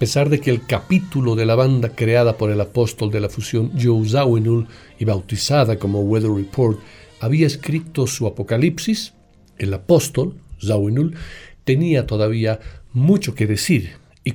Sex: male